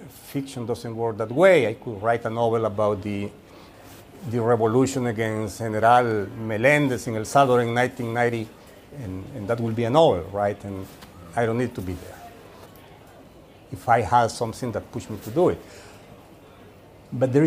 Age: 50-69